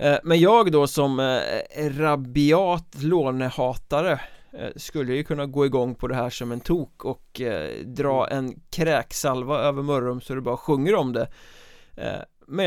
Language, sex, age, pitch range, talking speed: Swedish, male, 20-39, 130-160 Hz, 140 wpm